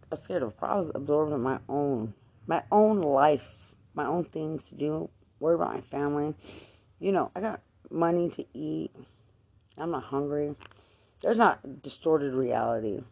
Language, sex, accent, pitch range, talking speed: English, female, American, 110-150 Hz, 160 wpm